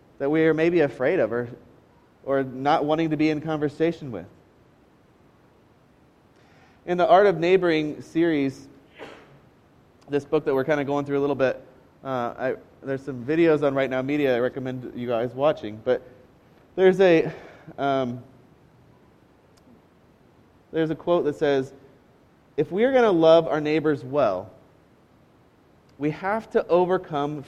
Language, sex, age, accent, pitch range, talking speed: English, male, 20-39, American, 135-180 Hz, 150 wpm